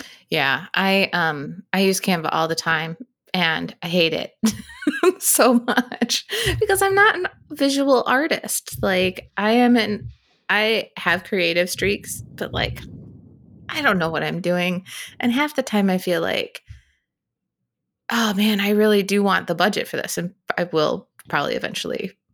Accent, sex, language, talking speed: American, female, English, 160 wpm